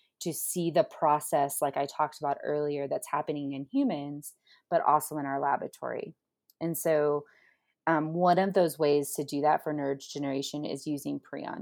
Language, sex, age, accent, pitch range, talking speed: English, female, 20-39, American, 145-165 Hz, 175 wpm